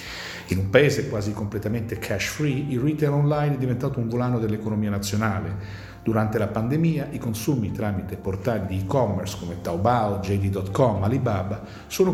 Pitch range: 100-140 Hz